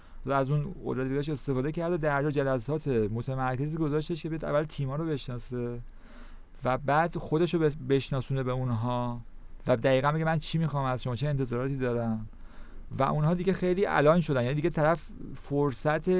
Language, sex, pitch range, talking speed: Persian, male, 125-160 Hz, 165 wpm